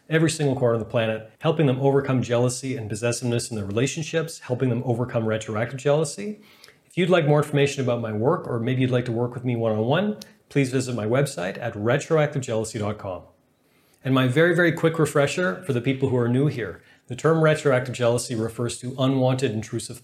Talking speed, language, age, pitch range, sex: 190 wpm, English, 30-49, 120-150 Hz, male